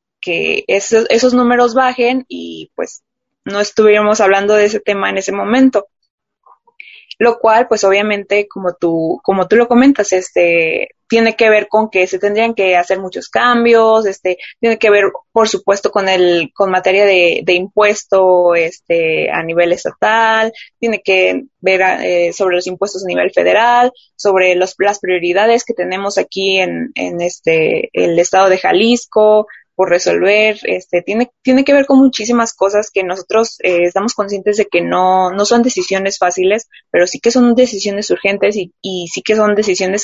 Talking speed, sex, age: 170 wpm, female, 20-39